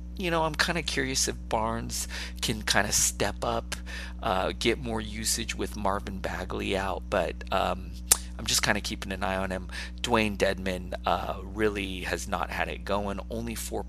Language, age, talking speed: English, 30-49, 185 wpm